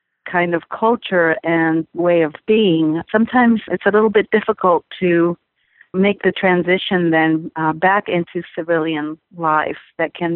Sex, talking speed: female, 145 wpm